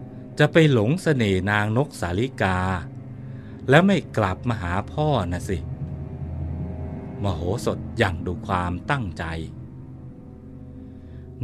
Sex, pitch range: male, 95-120 Hz